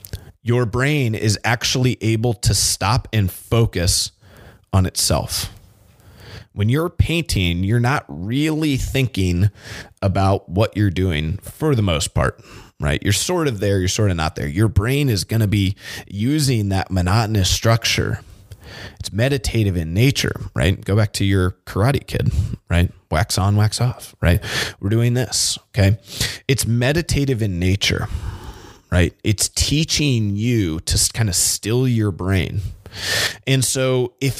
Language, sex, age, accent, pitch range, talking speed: English, male, 30-49, American, 95-120 Hz, 145 wpm